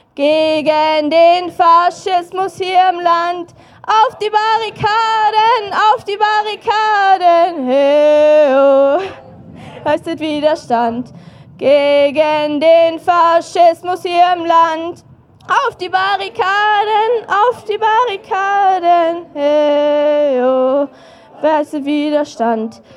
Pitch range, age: 295-415 Hz, 20-39